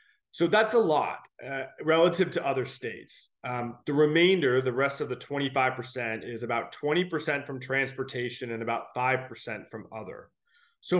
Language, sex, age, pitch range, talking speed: English, male, 30-49, 125-175 Hz, 155 wpm